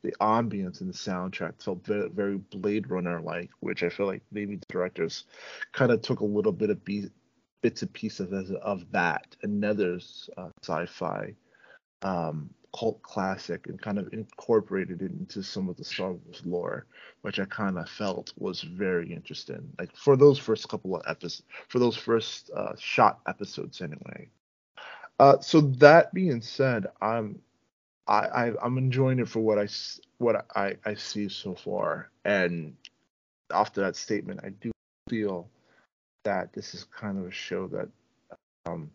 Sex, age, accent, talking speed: male, 30-49, American, 165 wpm